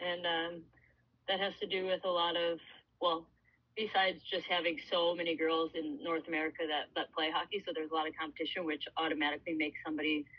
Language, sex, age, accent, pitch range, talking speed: English, female, 20-39, American, 160-185 Hz, 195 wpm